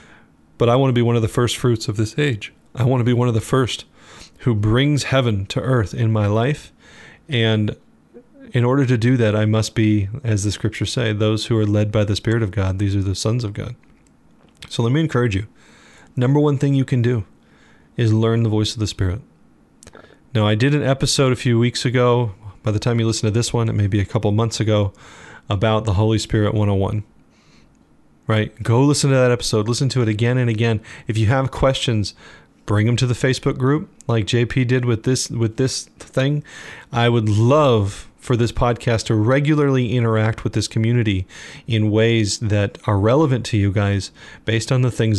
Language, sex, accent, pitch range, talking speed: English, male, American, 105-125 Hz, 210 wpm